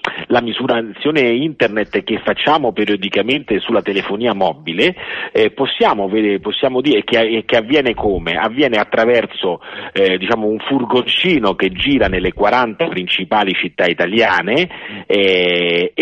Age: 40-59